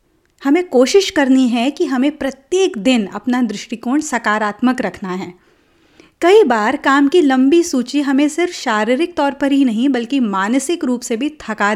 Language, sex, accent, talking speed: Hindi, female, native, 165 wpm